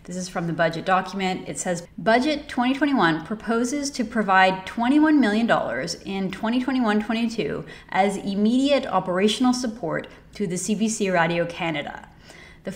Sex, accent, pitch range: female, American, 175-220 Hz